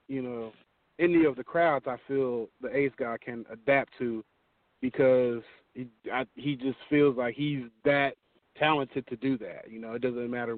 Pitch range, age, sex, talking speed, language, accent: 115-135 Hz, 40-59, male, 180 wpm, English, American